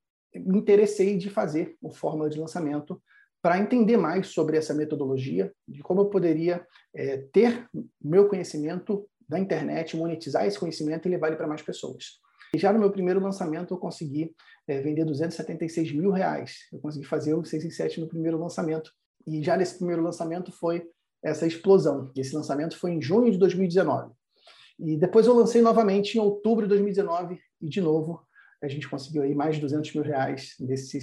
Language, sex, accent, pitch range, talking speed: Portuguese, male, Brazilian, 155-200 Hz, 180 wpm